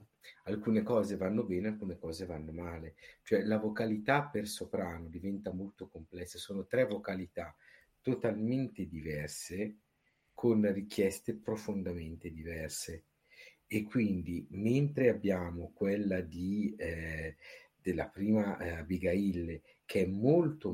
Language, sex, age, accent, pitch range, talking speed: Italian, male, 50-69, native, 85-105 Hz, 110 wpm